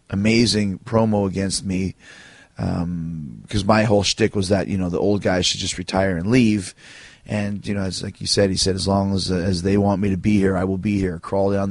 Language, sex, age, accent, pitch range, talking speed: English, male, 30-49, American, 95-110 Hz, 240 wpm